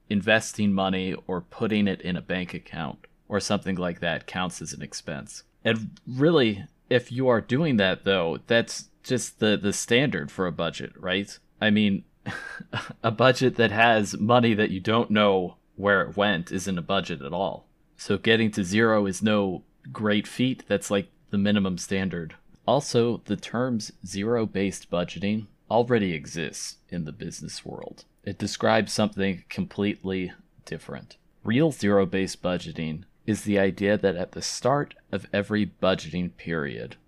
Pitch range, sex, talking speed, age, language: 95-115 Hz, male, 155 wpm, 30-49, English